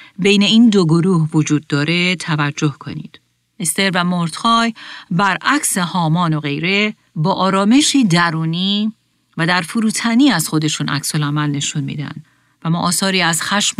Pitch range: 155-205 Hz